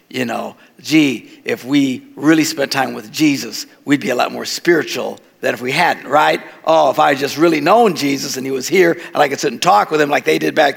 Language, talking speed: English, 250 wpm